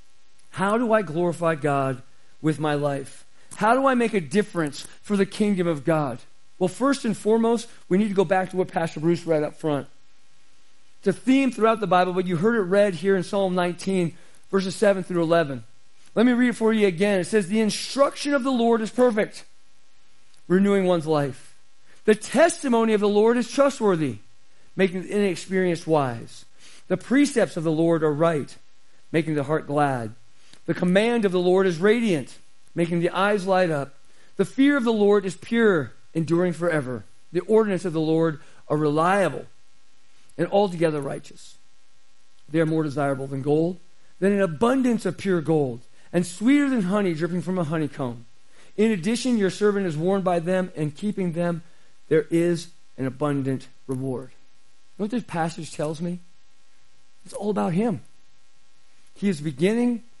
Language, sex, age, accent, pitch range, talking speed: English, male, 40-59, American, 155-210 Hz, 175 wpm